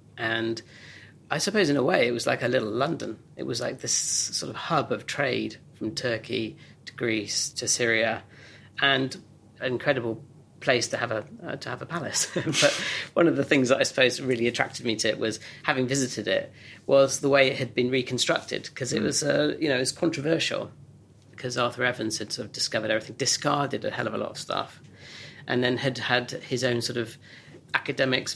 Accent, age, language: British, 40-59, English